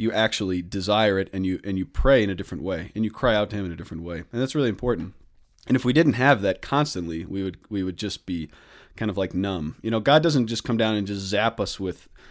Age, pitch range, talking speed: 30-49, 95-115 Hz, 275 wpm